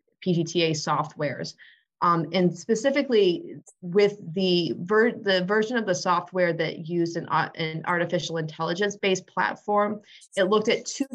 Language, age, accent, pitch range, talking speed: English, 30-49, American, 160-195 Hz, 140 wpm